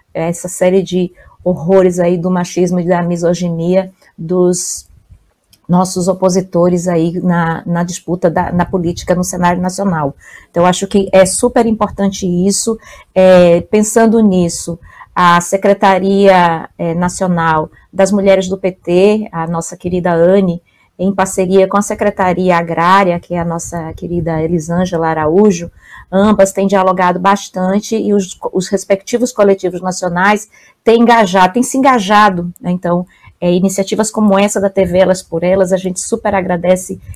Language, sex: Portuguese, female